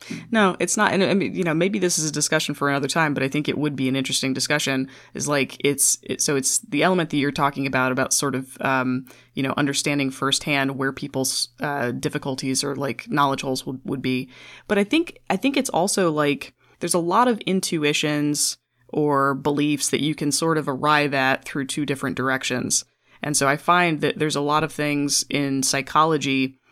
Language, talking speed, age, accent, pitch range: English, 210 wpm, 20-39, American, 135-155 Hz